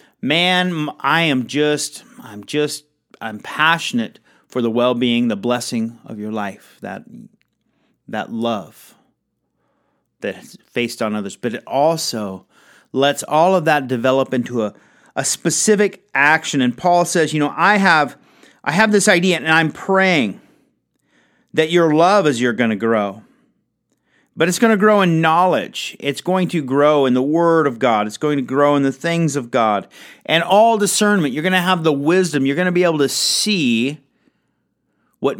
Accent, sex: American, male